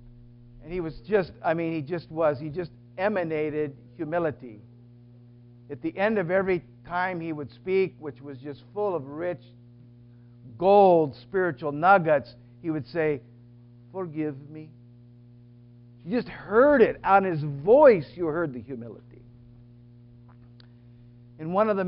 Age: 50-69